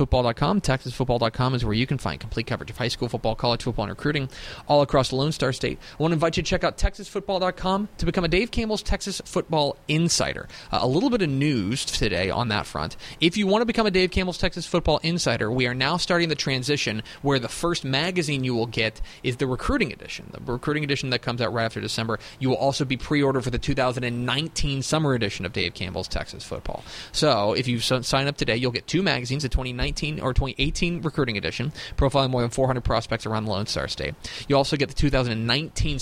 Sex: male